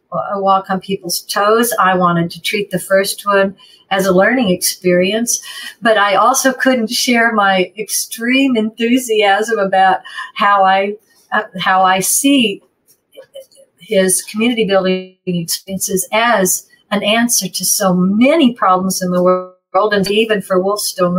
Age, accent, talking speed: 50-69, American, 135 wpm